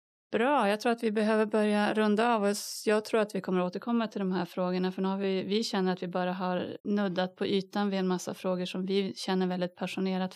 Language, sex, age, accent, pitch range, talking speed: Swedish, female, 30-49, native, 185-210 Hz, 230 wpm